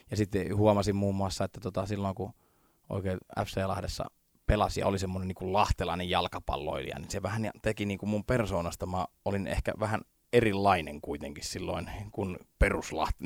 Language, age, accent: Finnish, 20-39, native